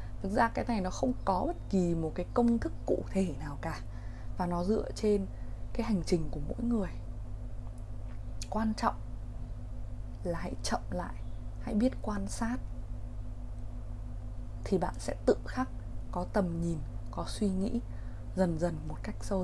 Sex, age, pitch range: female, 20-39, 105-170 Hz